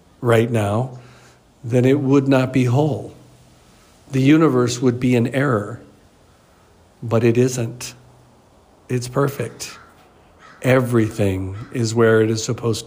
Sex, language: male, English